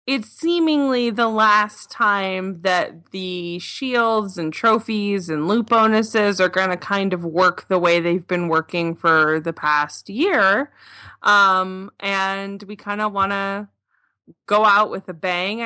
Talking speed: 145 wpm